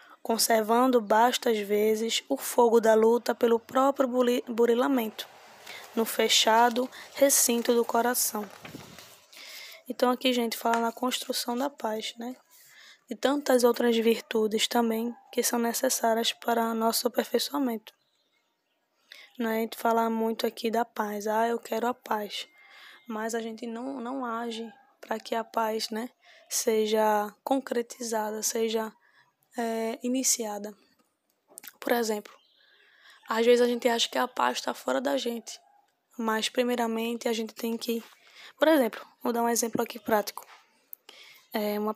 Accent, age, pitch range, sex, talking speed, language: Brazilian, 10-29, 225-250 Hz, female, 140 wpm, Portuguese